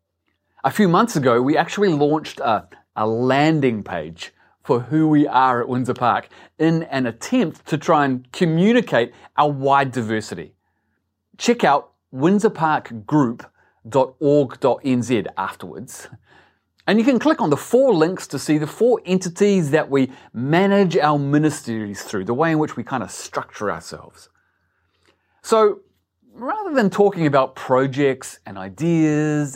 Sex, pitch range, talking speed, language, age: male, 120-175 Hz, 140 wpm, English, 30-49